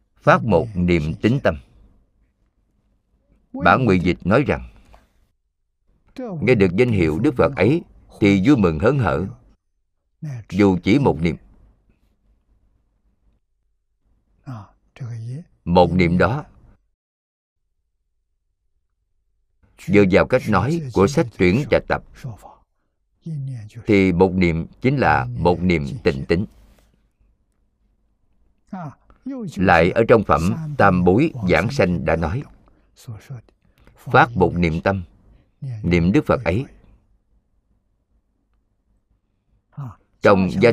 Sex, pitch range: male, 90-110 Hz